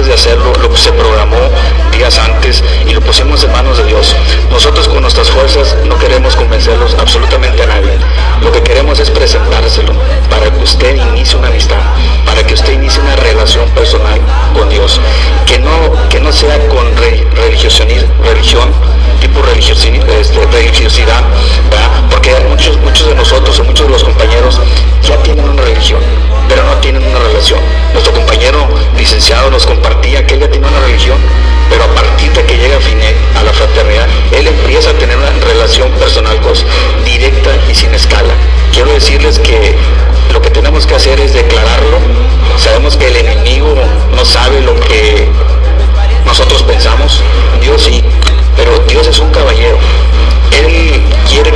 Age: 50-69